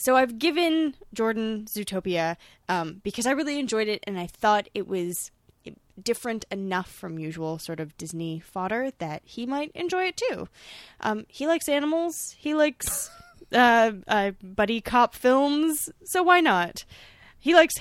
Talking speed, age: 155 wpm, 10-29